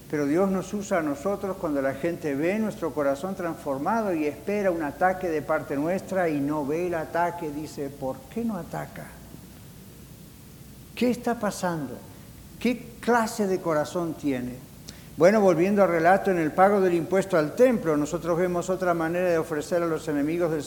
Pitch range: 145-190 Hz